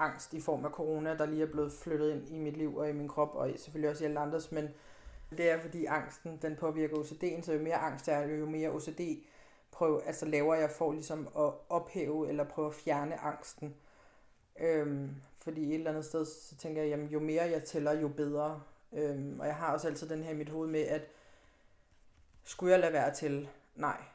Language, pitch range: Danish, 150-170 Hz